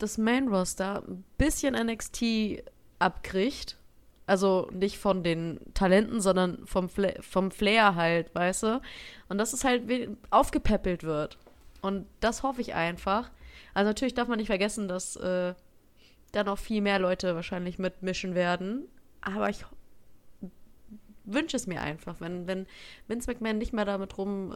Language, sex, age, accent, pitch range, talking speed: German, female, 20-39, German, 185-220 Hz, 150 wpm